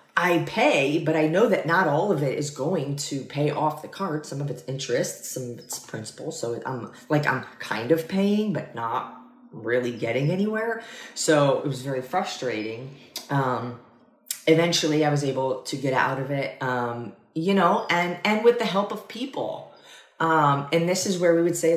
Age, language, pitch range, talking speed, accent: 30-49, English, 125-160 Hz, 195 wpm, American